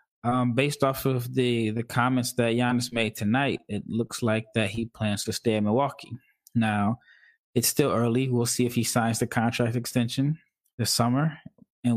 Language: English